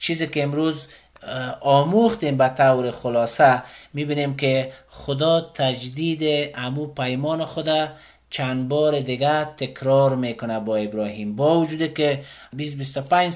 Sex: male